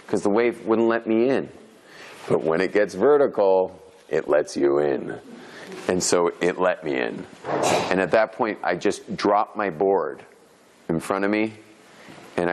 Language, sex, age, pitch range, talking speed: English, male, 40-59, 95-115 Hz, 170 wpm